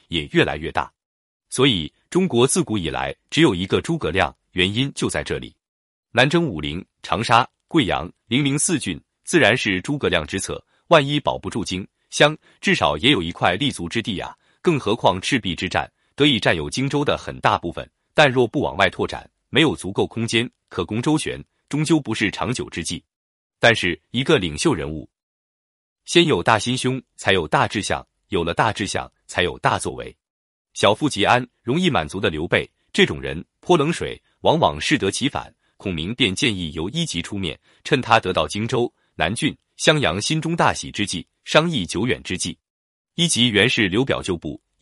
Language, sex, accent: Chinese, male, native